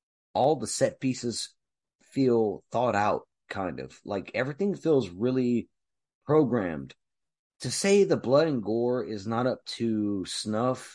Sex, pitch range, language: male, 110-140 Hz, English